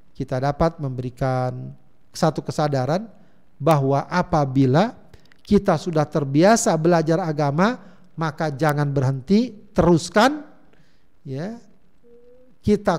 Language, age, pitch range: Indonesian, 50-69, 155-190 Hz